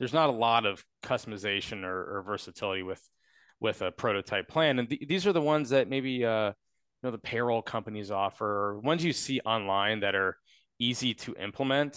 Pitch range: 100-130 Hz